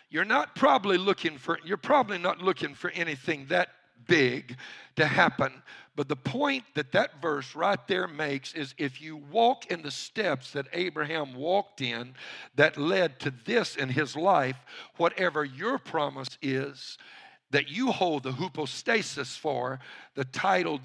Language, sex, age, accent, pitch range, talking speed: English, male, 60-79, American, 145-205 Hz, 155 wpm